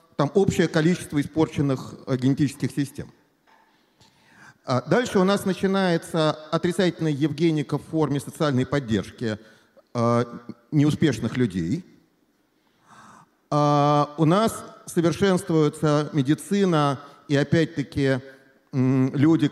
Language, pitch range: Russian, 125-170 Hz